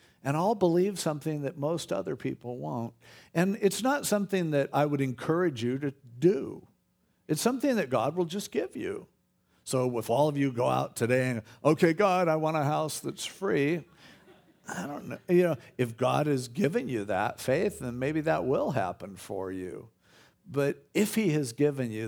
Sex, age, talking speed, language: male, 50-69, 190 wpm, English